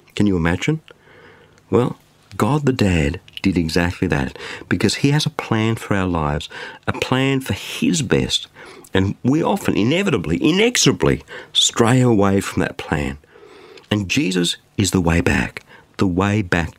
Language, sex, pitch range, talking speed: English, male, 90-135 Hz, 150 wpm